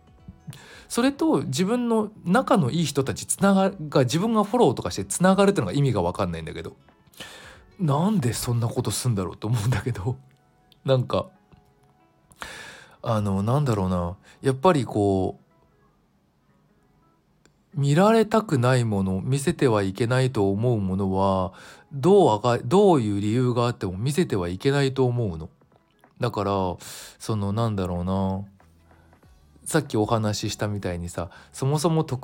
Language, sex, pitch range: Japanese, male, 95-145 Hz